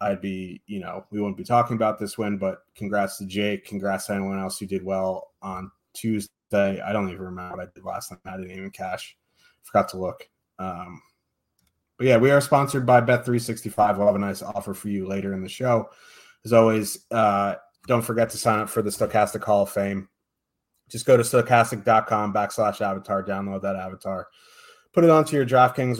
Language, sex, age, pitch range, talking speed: English, male, 30-49, 100-120 Hz, 200 wpm